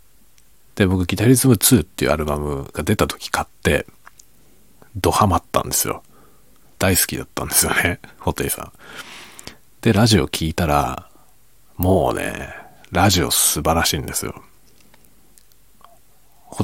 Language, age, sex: Japanese, 40-59, male